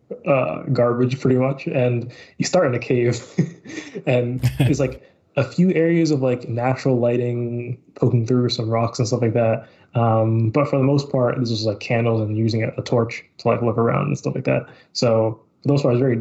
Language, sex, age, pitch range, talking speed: English, male, 20-39, 120-140 Hz, 205 wpm